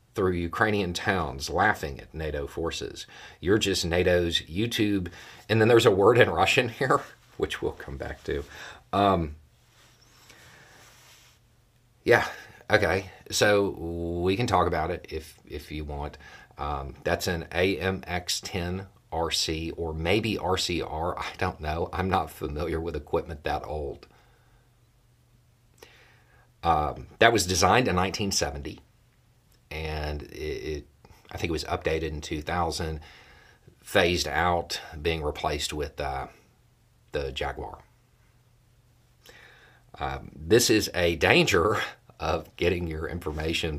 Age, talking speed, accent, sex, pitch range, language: 40-59, 115 wpm, American, male, 75-100 Hz, English